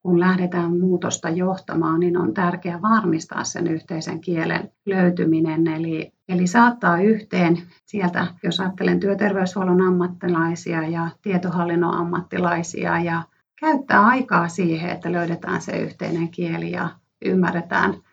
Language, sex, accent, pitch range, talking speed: Finnish, female, native, 170-195 Hz, 115 wpm